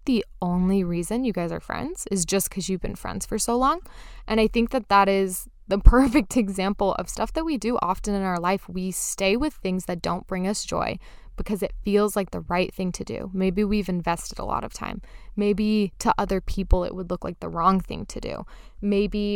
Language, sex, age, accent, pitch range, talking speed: English, female, 20-39, American, 185-210 Hz, 225 wpm